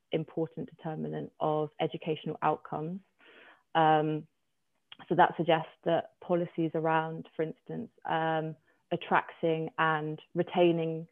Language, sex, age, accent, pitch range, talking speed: English, female, 20-39, British, 155-170 Hz, 95 wpm